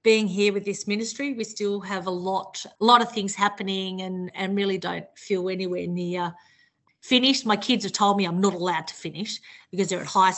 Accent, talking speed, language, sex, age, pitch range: Australian, 215 wpm, English, female, 30-49, 185-215 Hz